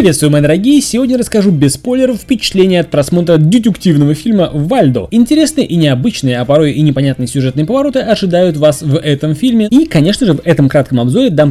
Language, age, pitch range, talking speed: Russian, 20-39, 130-200 Hz, 180 wpm